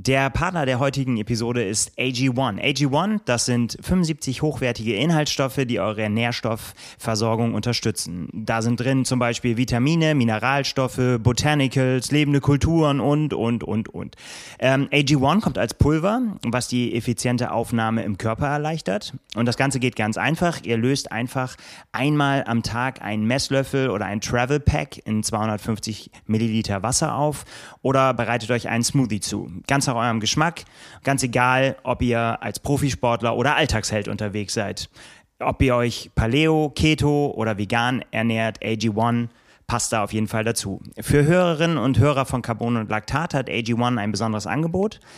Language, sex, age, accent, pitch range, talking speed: German, male, 30-49, German, 115-140 Hz, 155 wpm